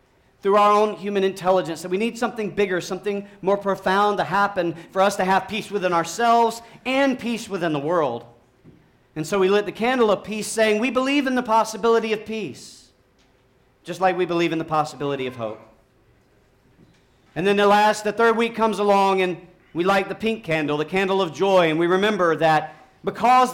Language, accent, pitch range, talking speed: English, American, 135-205 Hz, 195 wpm